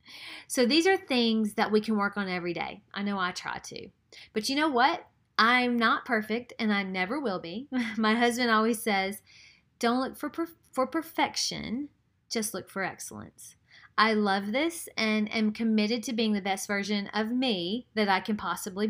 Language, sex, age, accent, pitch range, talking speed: English, female, 30-49, American, 195-245 Hz, 185 wpm